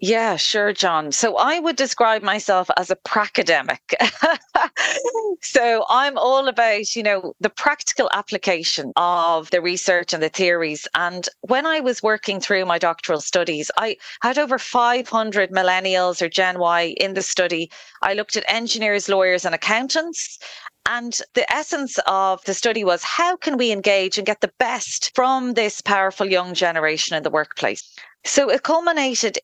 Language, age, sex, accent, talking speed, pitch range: English, 30-49, female, Irish, 160 wpm, 175-225 Hz